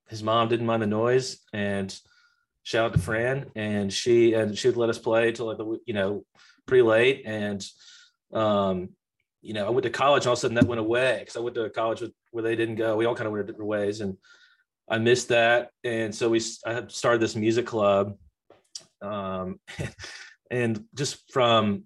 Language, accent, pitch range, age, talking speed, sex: English, American, 110-135 Hz, 30-49, 210 wpm, male